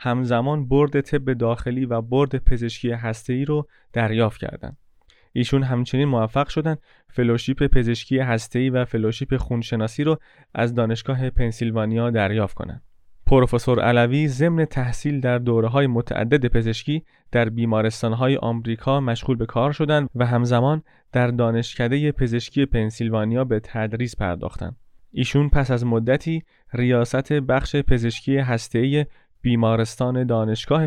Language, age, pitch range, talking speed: Persian, 30-49, 115-135 Hz, 120 wpm